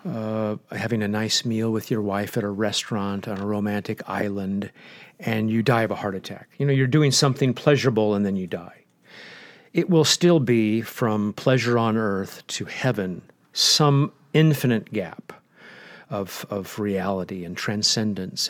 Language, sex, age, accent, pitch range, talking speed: English, male, 50-69, American, 100-120 Hz, 160 wpm